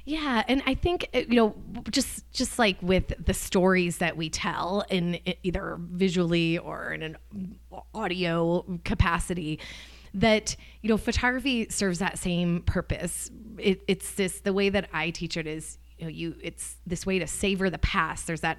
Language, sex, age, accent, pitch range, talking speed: English, female, 20-39, American, 170-205 Hz, 170 wpm